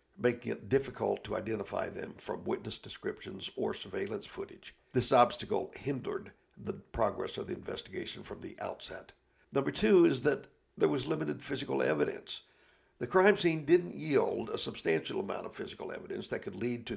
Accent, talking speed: American, 165 wpm